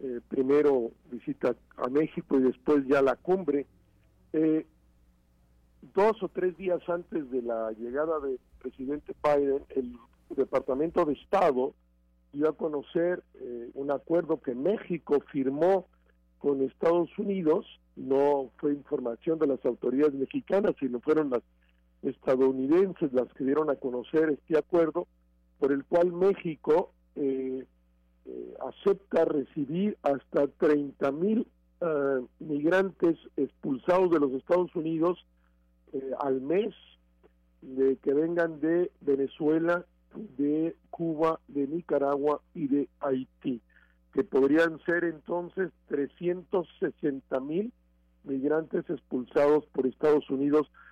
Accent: Mexican